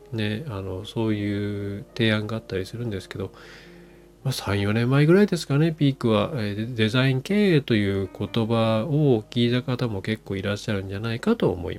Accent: native